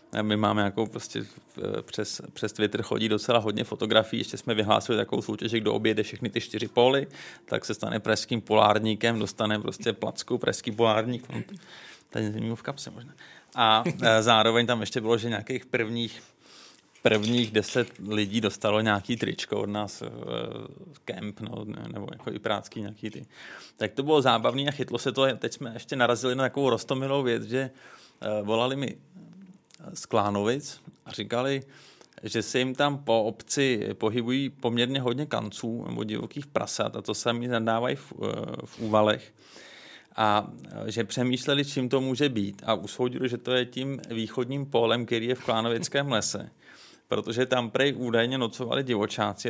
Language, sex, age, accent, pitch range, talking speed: Czech, male, 30-49, native, 110-130 Hz, 160 wpm